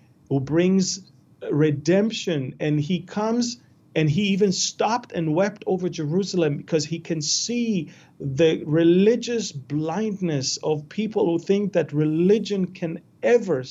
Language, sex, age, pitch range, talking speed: English, male, 40-59, 145-190 Hz, 125 wpm